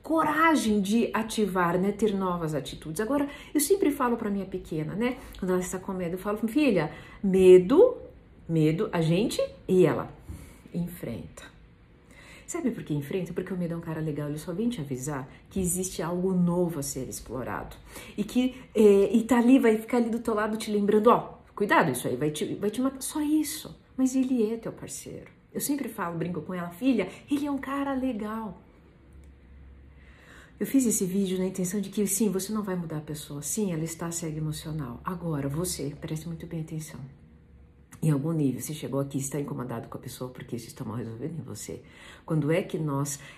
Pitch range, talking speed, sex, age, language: 145-220 Hz, 200 wpm, female, 50-69, Portuguese